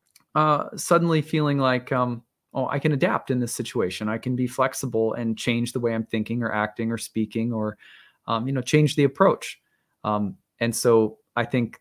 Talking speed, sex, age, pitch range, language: 195 wpm, male, 20-39, 115-145 Hz, English